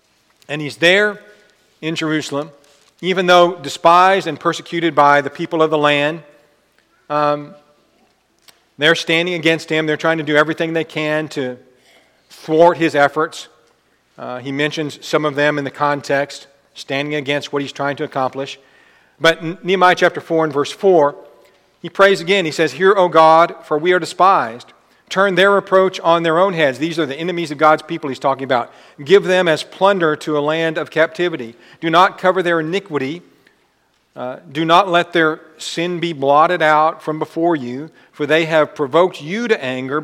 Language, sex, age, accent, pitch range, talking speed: English, male, 40-59, American, 145-175 Hz, 175 wpm